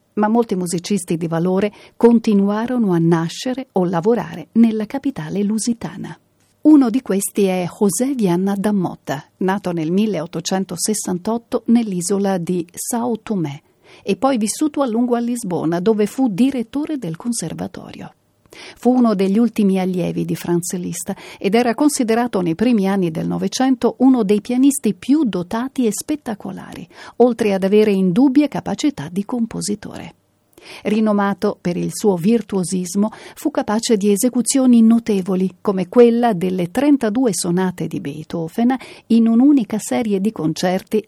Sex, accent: female, native